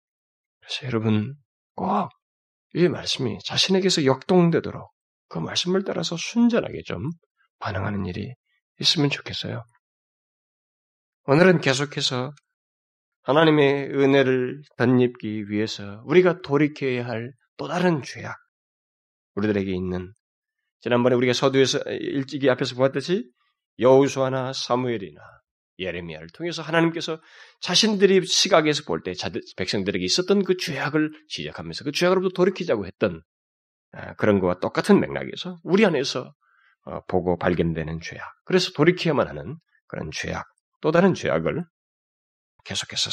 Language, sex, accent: Korean, male, native